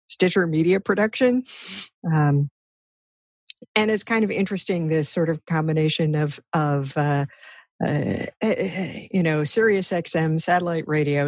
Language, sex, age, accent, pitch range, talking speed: English, female, 50-69, American, 150-195 Hz, 120 wpm